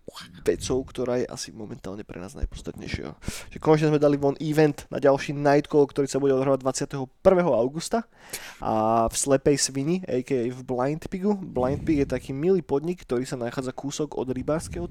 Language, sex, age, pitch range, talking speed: Slovak, male, 20-39, 125-145 Hz, 170 wpm